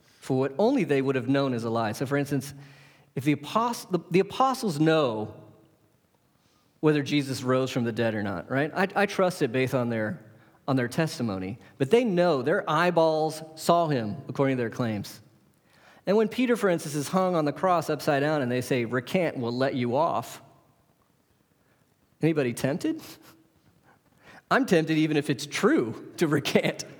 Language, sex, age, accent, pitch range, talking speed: English, male, 40-59, American, 130-170 Hz, 180 wpm